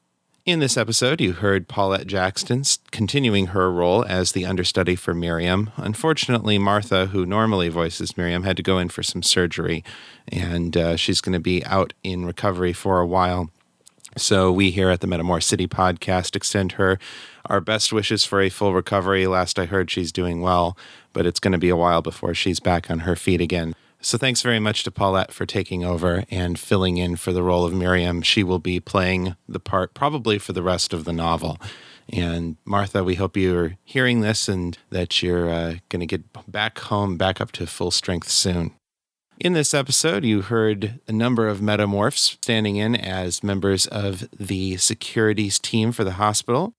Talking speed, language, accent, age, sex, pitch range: 190 wpm, English, American, 30-49, male, 90-110 Hz